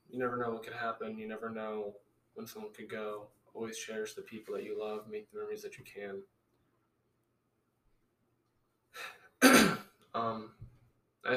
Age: 20-39